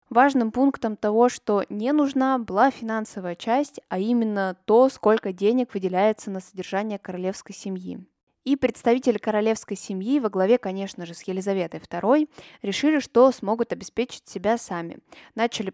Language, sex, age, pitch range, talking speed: Russian, female, 20-39, 185-235 Hz, 140 wpm